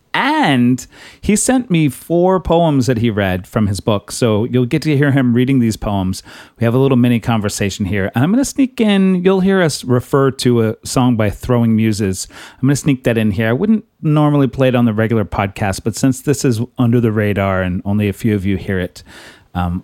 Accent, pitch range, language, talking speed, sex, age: American, 105-135 Hz, English, 230 wpm, male, 30-49